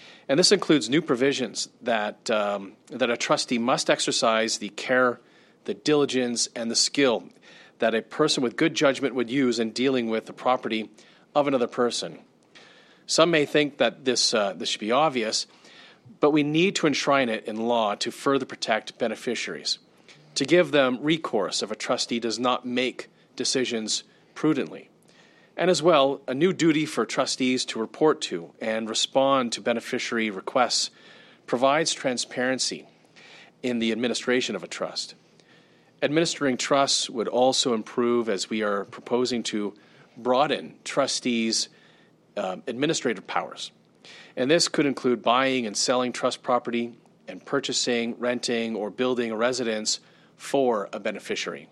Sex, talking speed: male, 145 wpm